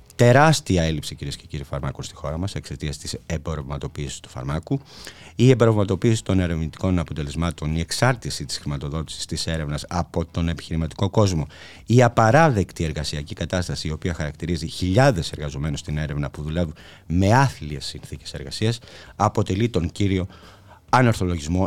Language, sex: Greek, male